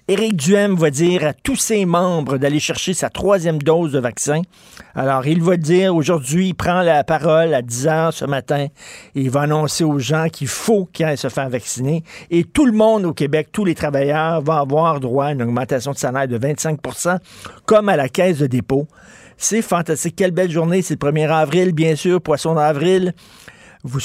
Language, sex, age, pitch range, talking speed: French, male, 50-69, 140-180 Hz, 200 wpm